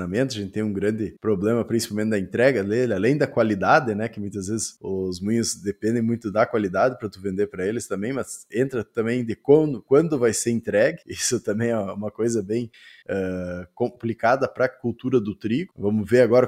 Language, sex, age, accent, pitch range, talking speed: Portuguese, male, 20-39, Brazilian, 105-135 Hz, 195 wpm